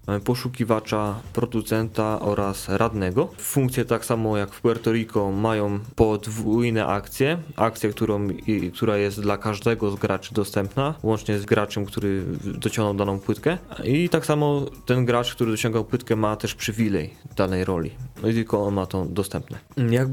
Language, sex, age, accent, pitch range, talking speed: Polish, male, 20-39, native, 100-120 Hz, 150 wpm